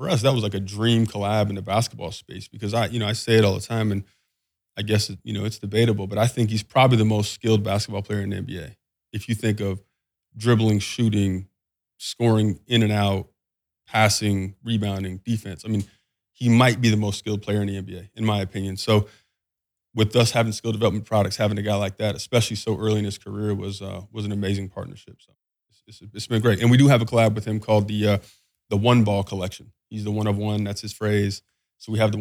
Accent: American